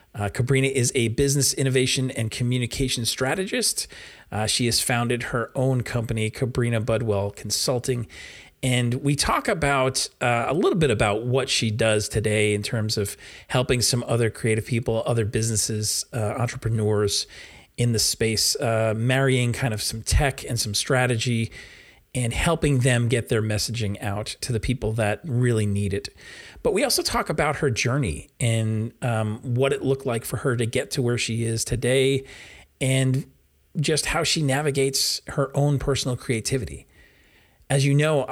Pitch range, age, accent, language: 110-135 Hz, 40-59, American, English